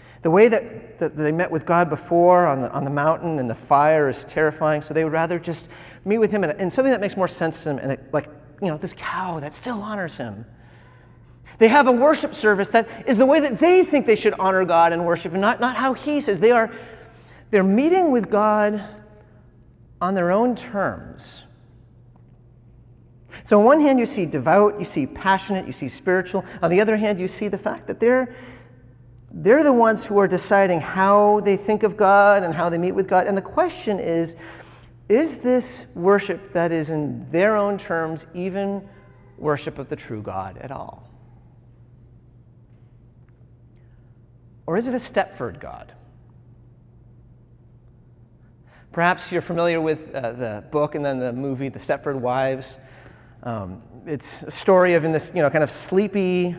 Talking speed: 185 wpm